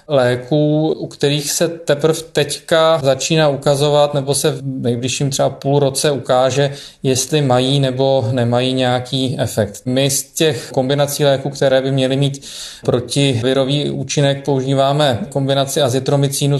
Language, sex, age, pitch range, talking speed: Czech, male, 20-39, 125-140 Hz, 130 wpm